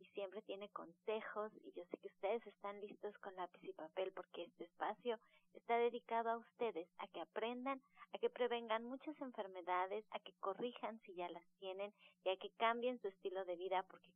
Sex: female